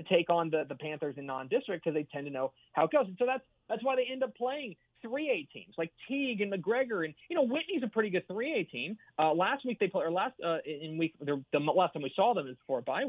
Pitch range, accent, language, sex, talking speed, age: 140-205 Hz, American, English, male, 270 wpm, 30-49